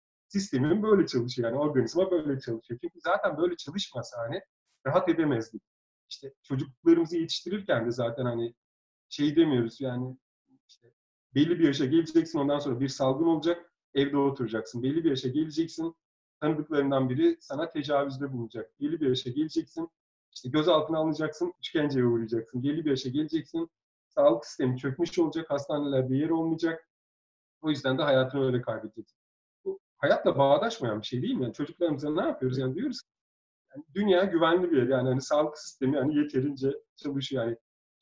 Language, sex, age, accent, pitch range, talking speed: Turkish, male, 40-59, native, 130-175 Hz, 150 wpm